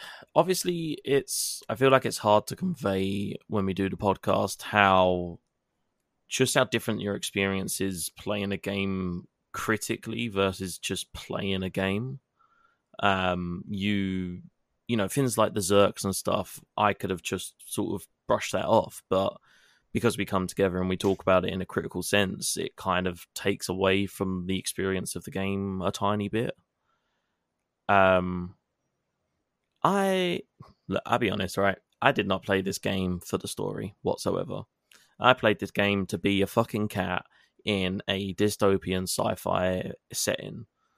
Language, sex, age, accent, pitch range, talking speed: English, male, 20-39, British, 95-110 Hz, 160 wpm